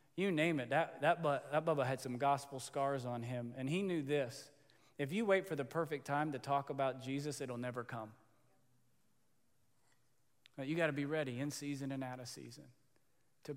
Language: English